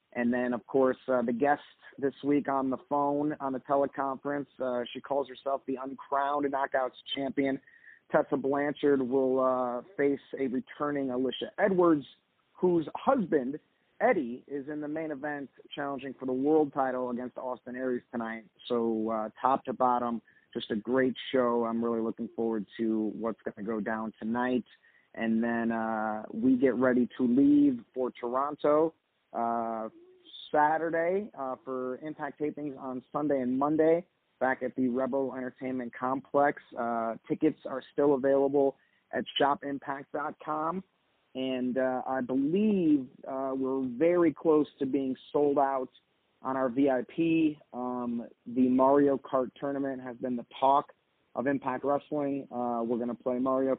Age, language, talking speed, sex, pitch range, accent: 30-49, English, 150 wpm, male, 125-145 Hz, American